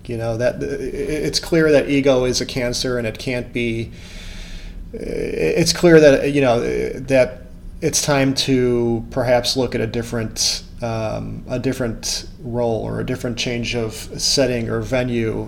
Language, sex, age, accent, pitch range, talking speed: English, male, 30-49, American, 115-130 Hz, 155 wpm